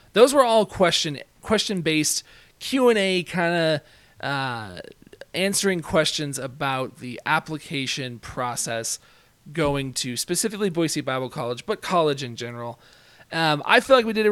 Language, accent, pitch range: English, American, 130-165 Hz